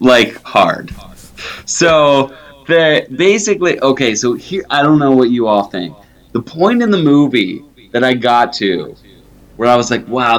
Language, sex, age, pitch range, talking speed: English, male, 20-39, 95-125 Hz, 170 wpm